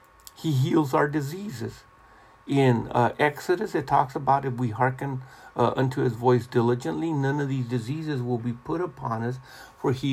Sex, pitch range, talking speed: male, 125-155 Hz, 170 wpm